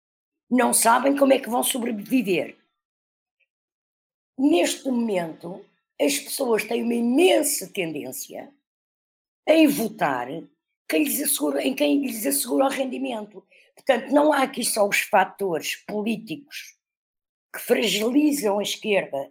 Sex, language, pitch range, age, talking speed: female, Portuguese, 195-275 Hz, 50-69, 120 wpm